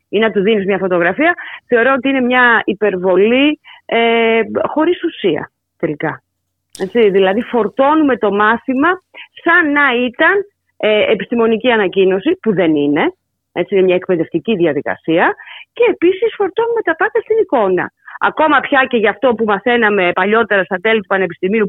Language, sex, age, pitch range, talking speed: Greek, female, 30-49, 180-255 Hz, 135 wpm